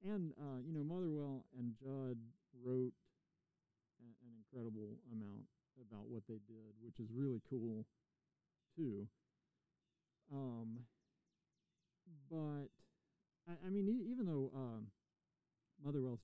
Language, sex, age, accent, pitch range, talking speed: English, male, 40-59, American, 115-145 Hz, 115 wpm